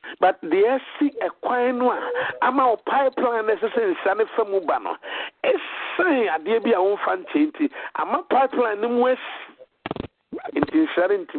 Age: 50-69